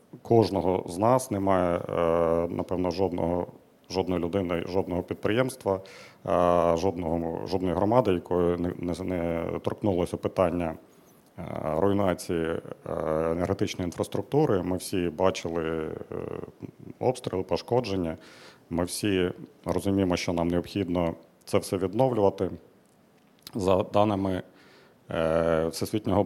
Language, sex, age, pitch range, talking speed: Ukrainian, male, 40-59, 85-100 Hz, 85 wpm